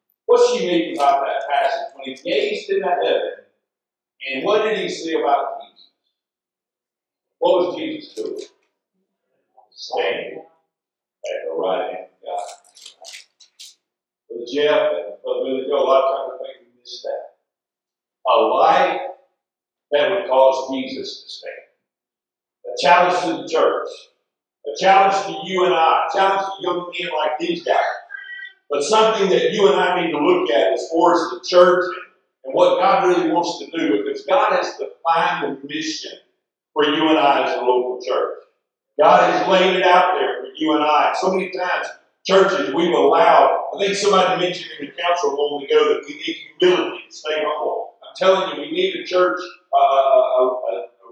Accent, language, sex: American, English, male